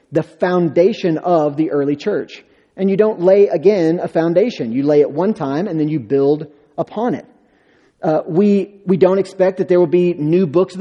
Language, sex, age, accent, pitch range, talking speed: English, male, 30-49, American, 150-185 Hz, 200 wpm